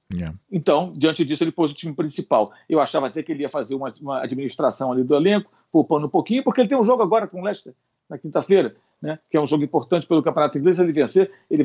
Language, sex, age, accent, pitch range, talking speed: Portuguese, male, 50-69, Brazilian, 155-215 Hz, 240 wpm